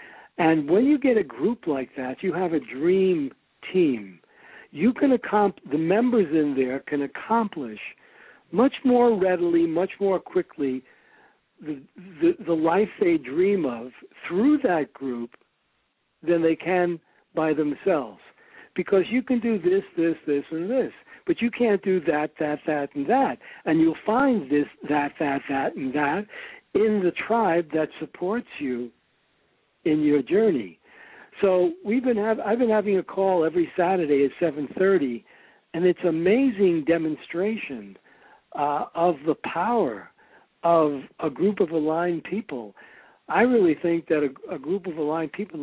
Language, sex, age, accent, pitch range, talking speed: English, male, 60-79, American, 145-200 Hz, 155 wpm